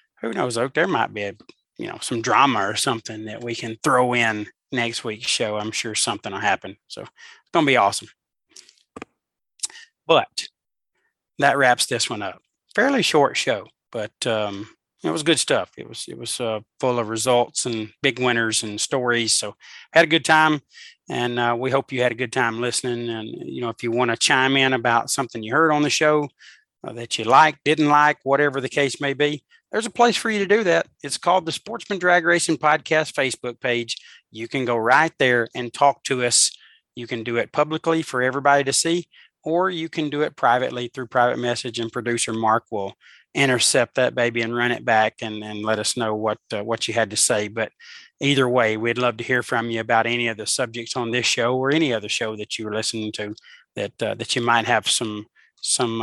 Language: English